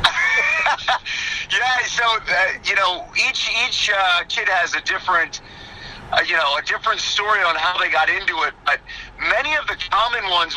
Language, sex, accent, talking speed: English, male, American, 170 wpm